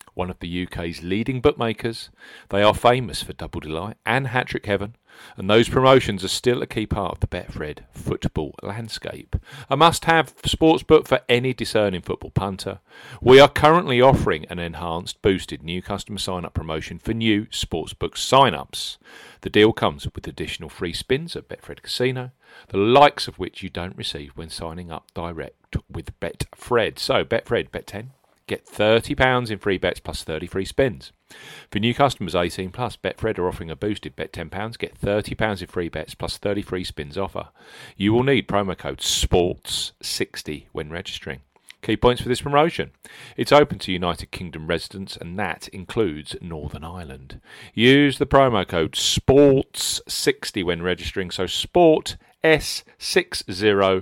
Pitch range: 90-125 Hz